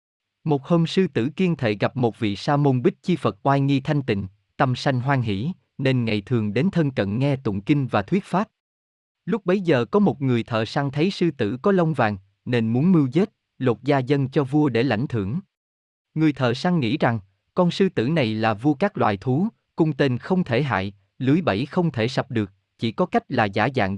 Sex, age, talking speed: male, 20-39, 230 wpm